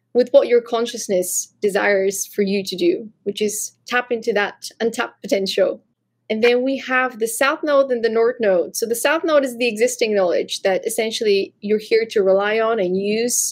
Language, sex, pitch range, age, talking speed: English, female, 205-245 Hz, 20-39, 195 wpm